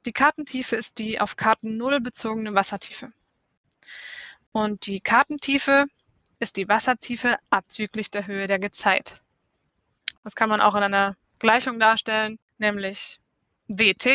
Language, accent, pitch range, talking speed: German, German, 205-235 Hz, 125 wpm